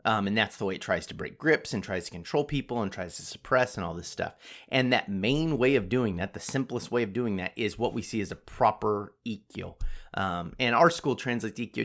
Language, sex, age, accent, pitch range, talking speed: English, male, 30-49, American, 100-140 Hz, 255 wpm